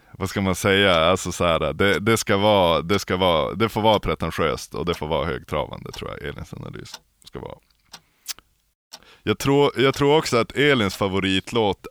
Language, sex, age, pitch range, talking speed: Swedish, male, 20-39, 85-110 Hz, 185 wpm